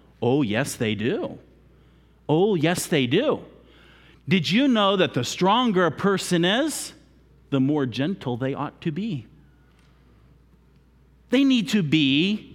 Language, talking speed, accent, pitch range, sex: English, 135 wpm, American, 135-220 Hz, male